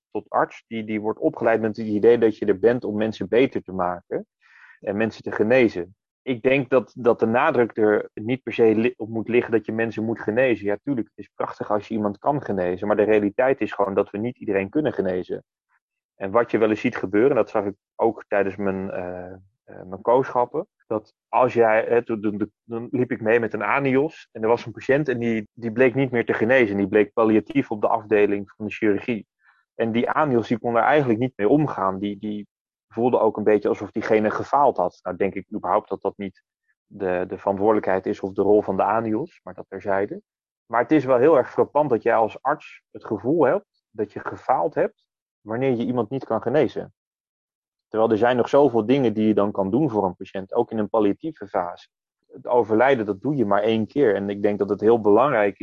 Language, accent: Dutch, Dutch